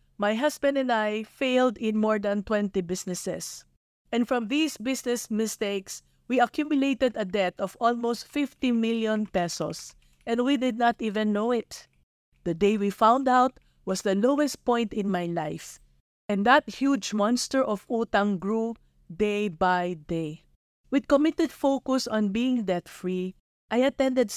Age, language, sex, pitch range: 20-39, English, female, 195-255 Hz